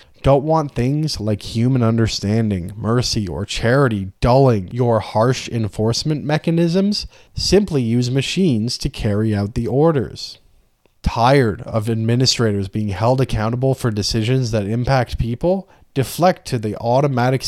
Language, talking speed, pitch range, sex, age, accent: English, 125 wpm, 110-130 Hz, male, 20-39, American